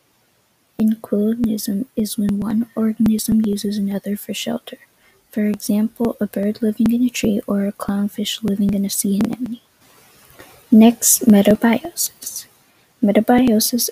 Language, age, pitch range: English, 20-39, 215-245 Hz